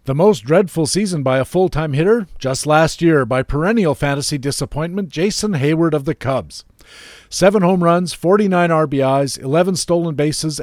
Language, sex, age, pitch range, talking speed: English, male, 50-69, 135-175 Hz, 160 wpm